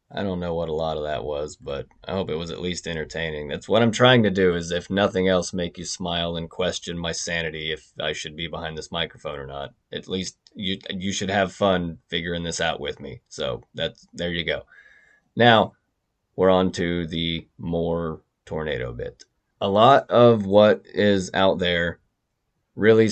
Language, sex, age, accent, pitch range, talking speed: English, male, 30-49, American, 85-95 Hz, 195 wpm